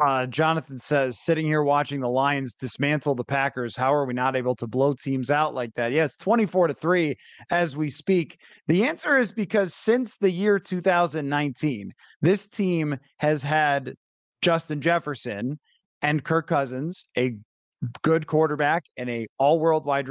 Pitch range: 140-190 Hz